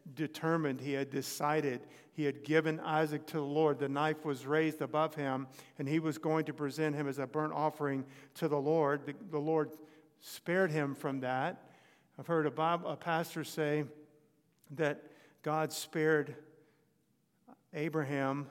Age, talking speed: 50-69, 160 wpm